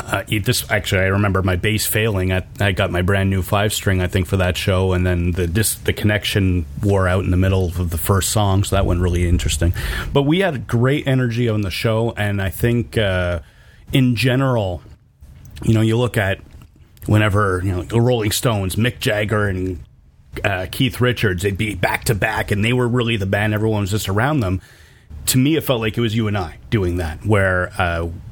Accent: American